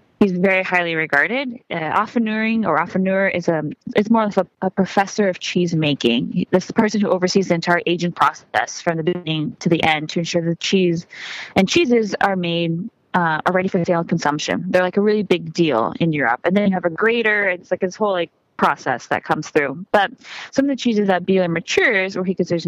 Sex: female